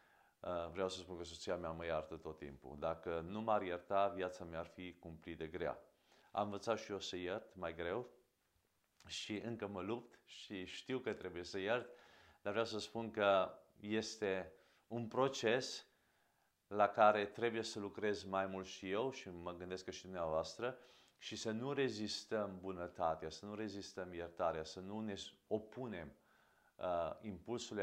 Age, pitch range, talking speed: 40-59, 90-110 Hz, 165 wpm